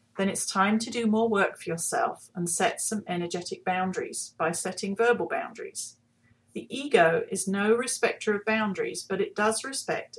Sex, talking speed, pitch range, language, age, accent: female, 170 wpm, 170-220 Hz, English, 40-59, British